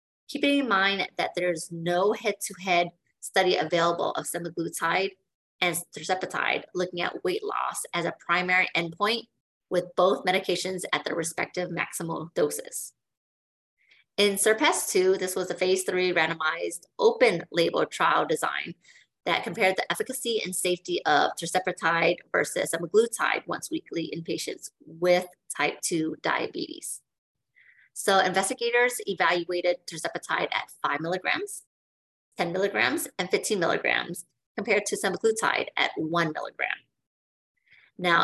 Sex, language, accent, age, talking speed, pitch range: female, English, American, 30-49, 120 wpm, 175-235 Hz